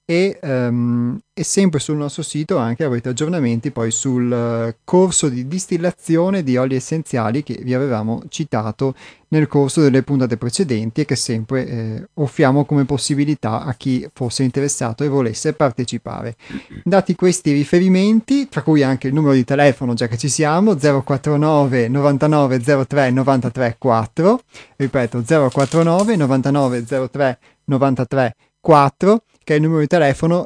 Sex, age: male, 30-49